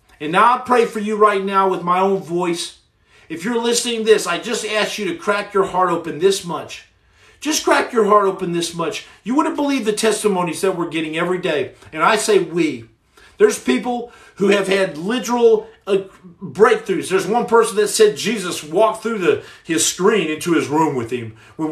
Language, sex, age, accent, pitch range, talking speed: English, male, 40-59, American, 175-225 Hz, 205 wpm